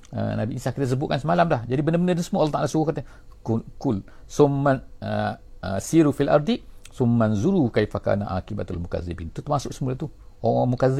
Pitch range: 100-130 Hz